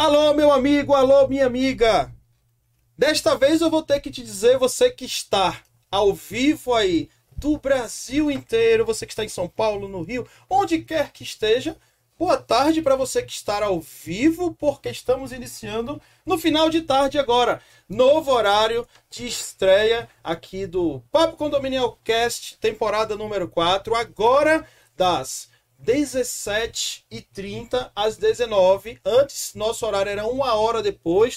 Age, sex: 40-59, male